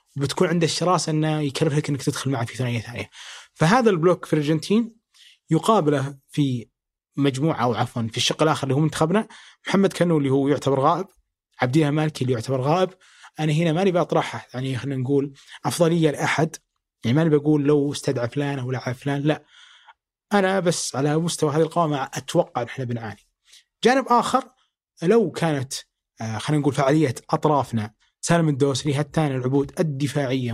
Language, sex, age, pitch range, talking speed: Arabic, male, 20-39, 140-170 Hz, 160 wpm